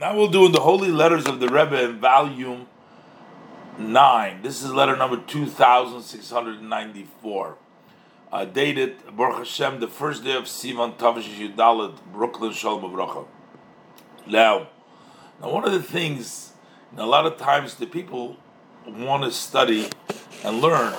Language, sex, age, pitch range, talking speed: English, male, 40-59, 115-150 Hz, 140 wpm